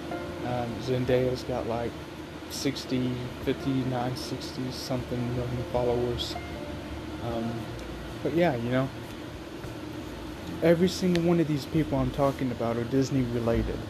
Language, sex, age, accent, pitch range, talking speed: English, male, 20-39, American, 115-140 Hz, 115 wpm